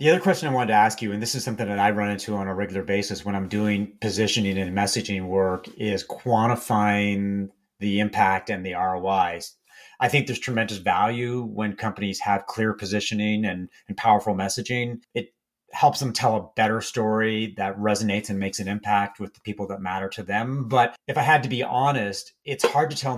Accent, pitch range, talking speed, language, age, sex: American, 105-125 Hz, 205 wpm, English, 30-49, male